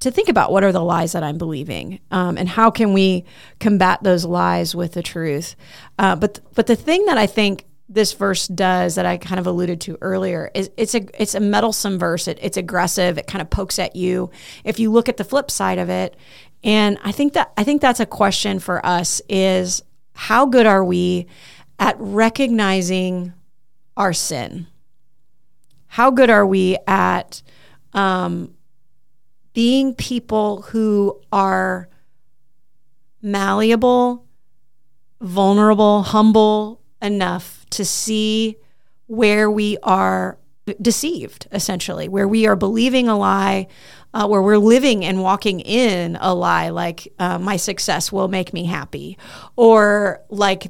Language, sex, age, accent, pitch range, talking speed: English, female, 30-49, American, 180-215 Hz, 155 wpm